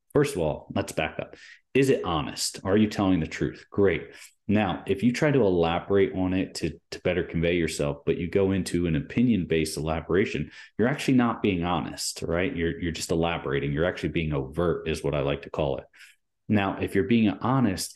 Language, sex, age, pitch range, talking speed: English, male, 30-49, 80-100 Hz, 205 wpm